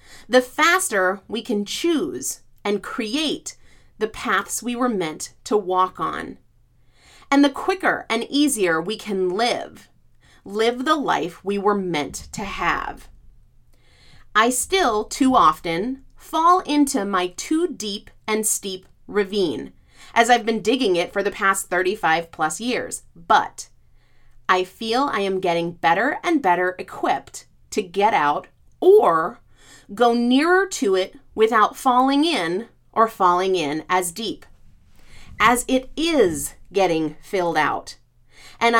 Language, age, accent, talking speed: English, 30-49, American, 135 wpm